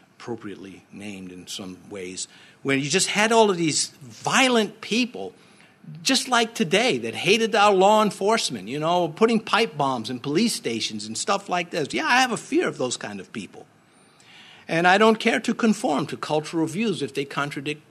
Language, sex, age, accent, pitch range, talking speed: English, male, 50-69, American, 155-220 Hz, 190 wpm